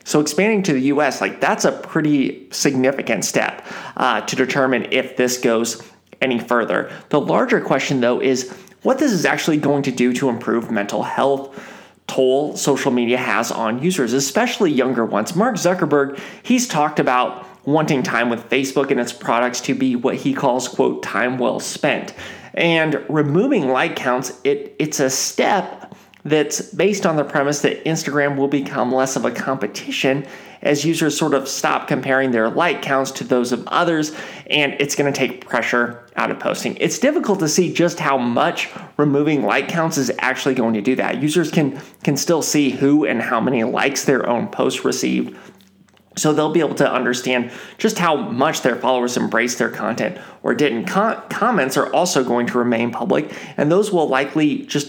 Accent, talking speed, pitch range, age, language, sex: American, 180 wpm, 130-165 Hz, 30-49, English, male